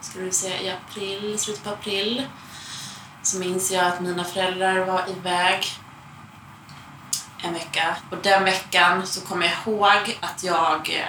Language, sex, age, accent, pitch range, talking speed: Swedish, female, 20-39, native, 175-200 Hz, 145 wpm